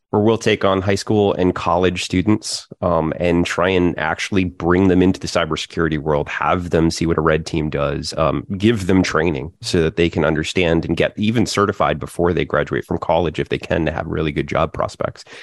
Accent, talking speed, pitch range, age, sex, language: American, 215 wpm, 85-120 Hz, 30-49, male, English